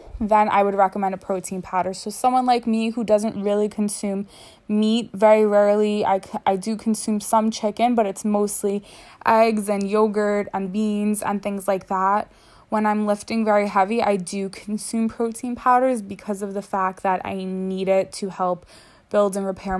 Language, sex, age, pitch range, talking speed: English, female, 20-39, 190-215 Hz, 180 wpm